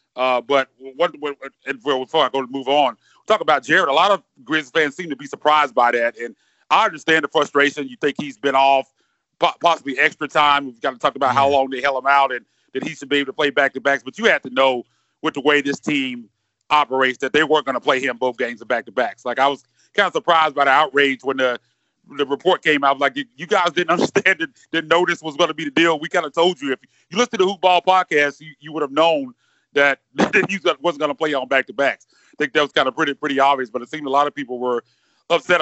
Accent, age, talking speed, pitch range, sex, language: American, 30-49, 270 wpm, 135-170 Hz, male, English